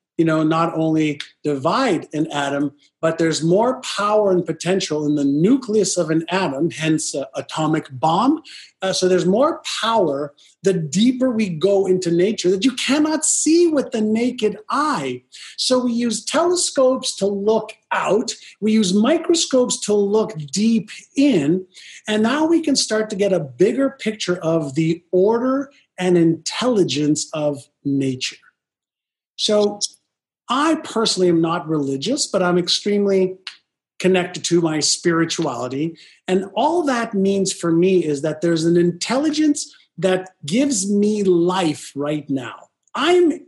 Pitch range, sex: 160-240 Hz, male